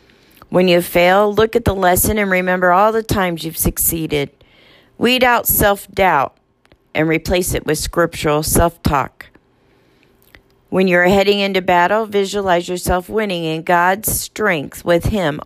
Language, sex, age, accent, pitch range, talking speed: English, female, 40-59, American, 160-215 Hz, 140 wpm